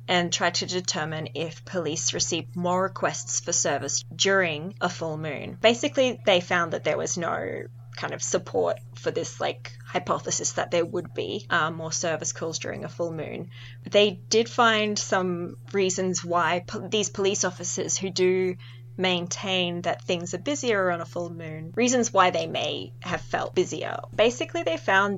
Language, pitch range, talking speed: English, 155-190 Hz, 170 wpm